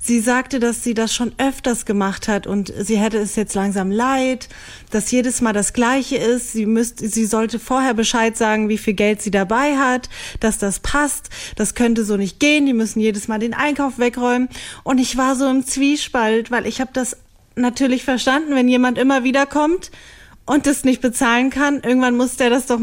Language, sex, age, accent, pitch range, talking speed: German, female, 30-49, German, 220-265 Hz, 200 wpm